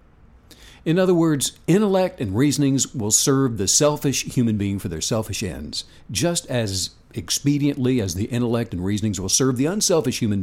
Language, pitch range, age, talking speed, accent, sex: English, 110-155 Hz, 60-79, 165 wpm, American, male